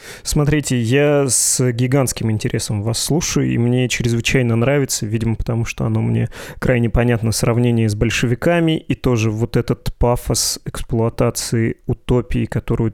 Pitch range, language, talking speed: 115-130 Hz, Russian, 135 wpm